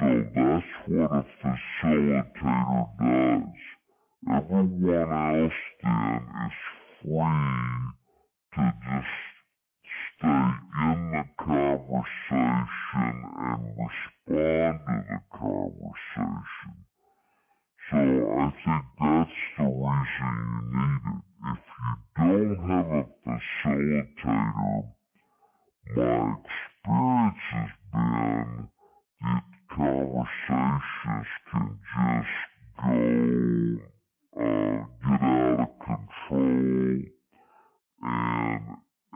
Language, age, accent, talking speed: English, 60-79, American, 75 wpm